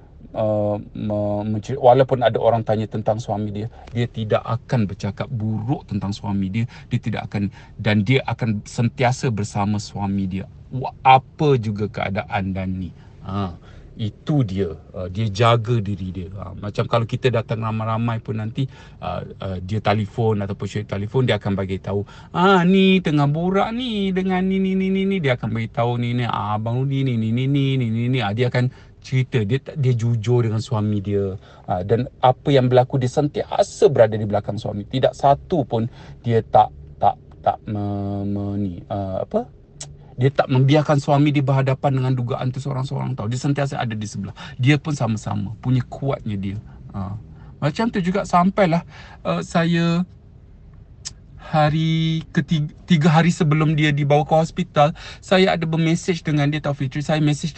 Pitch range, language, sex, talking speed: 105-145 Hz, Malay, male, 170 wpm